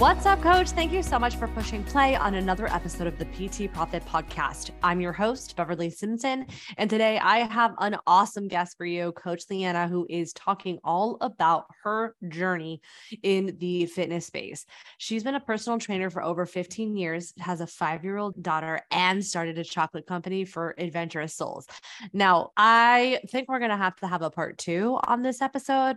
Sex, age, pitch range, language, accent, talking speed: female, 20-39, 170-210 Hz, English, American, 185 wpm